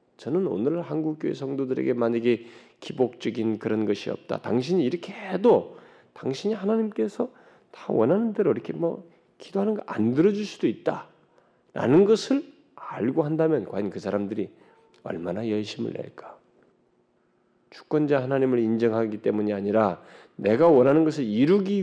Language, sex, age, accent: Korean, male, 40-59, native